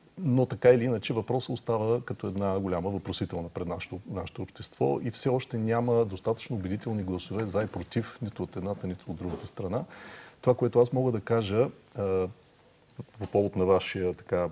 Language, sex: Bulgarian, male